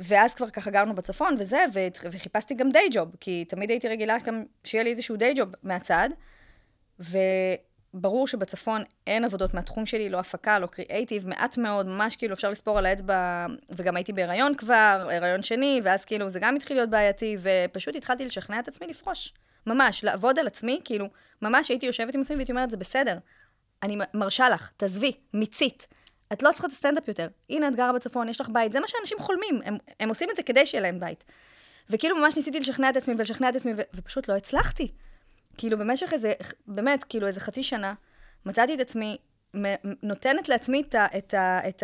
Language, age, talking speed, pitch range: Hebrew, 20-39, 195 wpm, 195-255 Hz